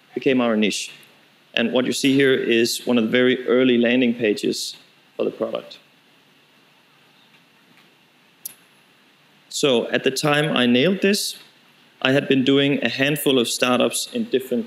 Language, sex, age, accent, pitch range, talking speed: English, male, 30-49, Danish, 120-140 Hz, 145 wpm